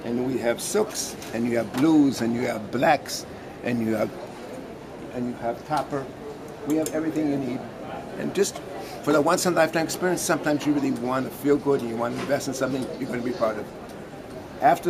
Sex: male